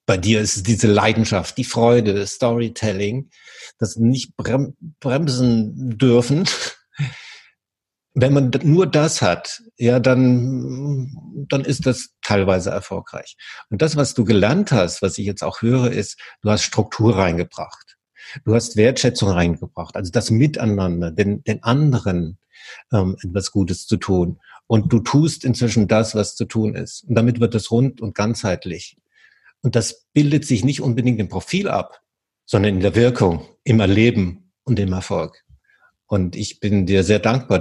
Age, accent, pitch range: 60-79, German, 100-125 Hz